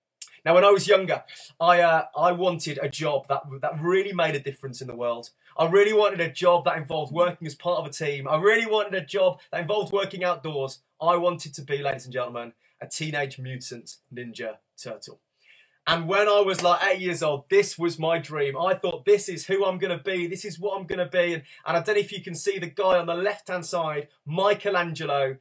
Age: 20-39